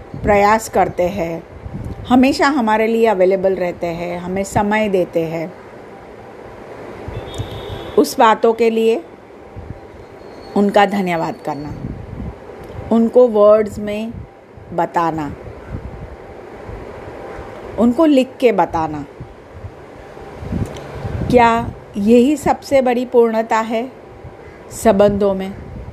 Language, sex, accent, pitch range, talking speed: Hindi, female, native, 170-225 Hz, 85 wpm